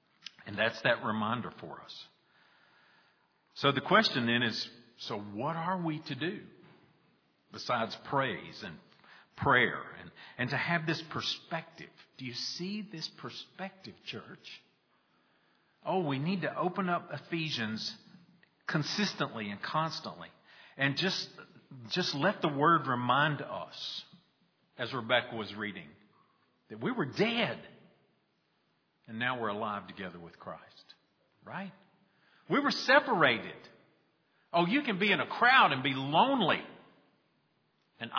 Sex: male